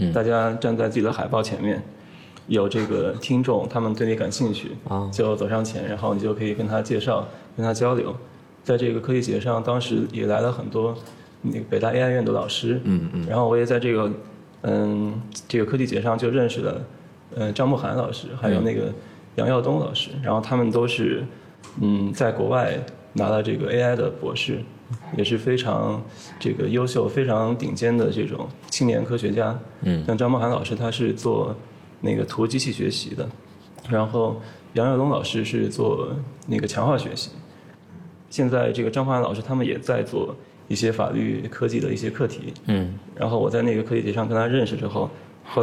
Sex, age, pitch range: male, 20-39, 110-125 Hz